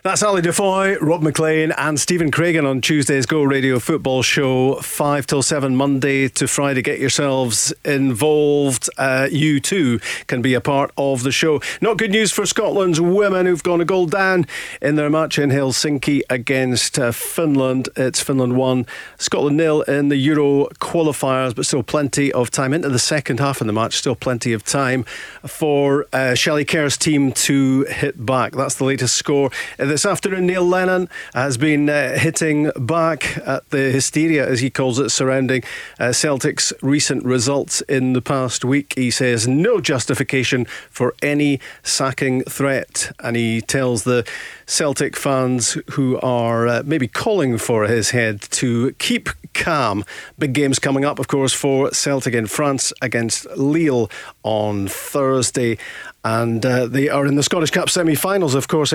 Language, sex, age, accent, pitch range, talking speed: English, male, 40-59, British, 130-155 Hz, 170 wpm